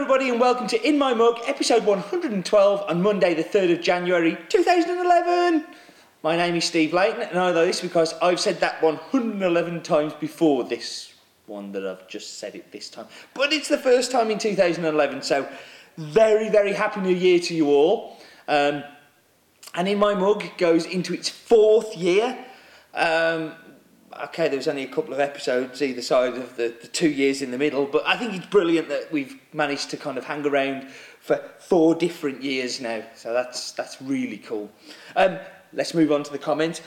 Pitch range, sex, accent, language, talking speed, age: 155-205 Hz, male, British, English, 190 wpm, 30-49